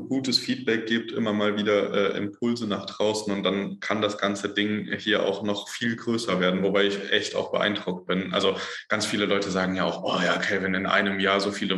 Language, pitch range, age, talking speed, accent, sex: German, 100-105 Hz, 20-39, 220 wpm, German, male